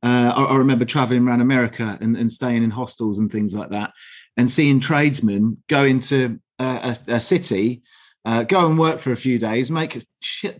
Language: English